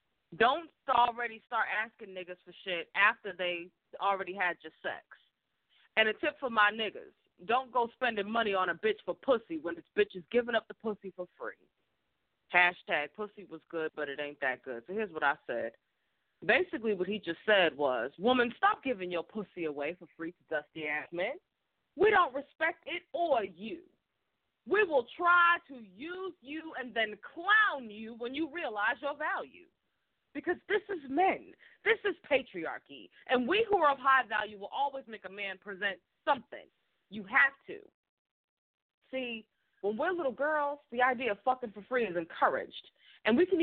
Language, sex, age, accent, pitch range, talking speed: English, female, 30-49, American, 200-290 Hz, 180 wpm